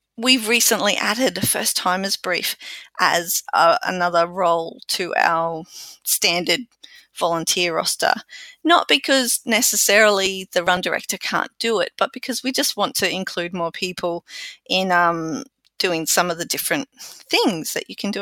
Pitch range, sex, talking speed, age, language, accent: 185-255 Hz, female, 150 wpm, 30-49, English, Australian